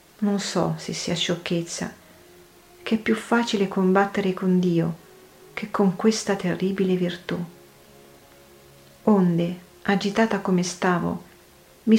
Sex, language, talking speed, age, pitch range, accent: female, Italian, 110 wpm, 40-59, 175-205 Hz, native